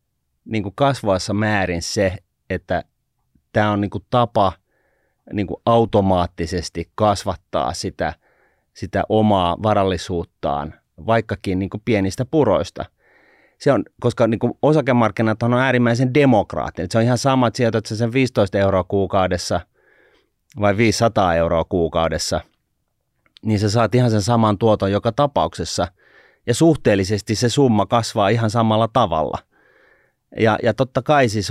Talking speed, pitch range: 120 wpm, 95-115 Hz